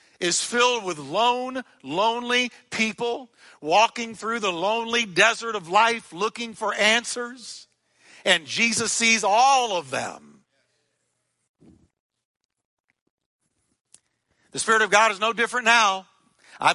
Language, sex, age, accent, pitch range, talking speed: English, male, 60-79, American, 130-180 Hz, 110 wpm